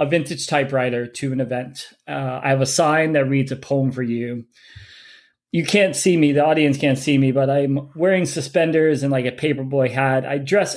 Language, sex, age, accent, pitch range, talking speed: English, male, 30-49, American, 135-175 Hz, 205 wpm